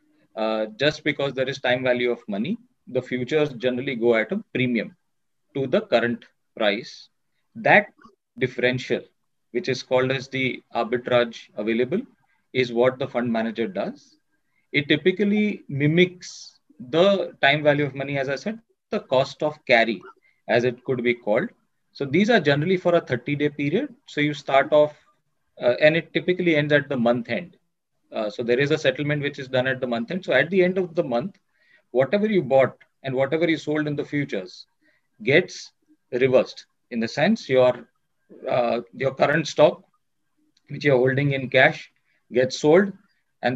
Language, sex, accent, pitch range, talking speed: English, male, Indian, 130-180 Hz, 170 wpm